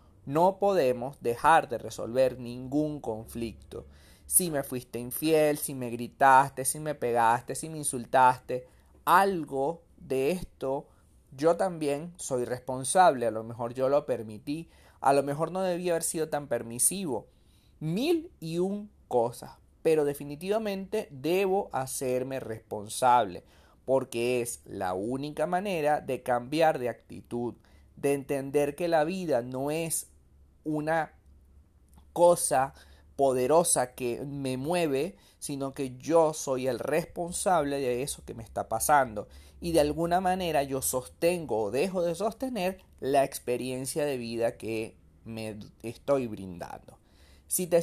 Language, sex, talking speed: Spanish, male, 130 wpm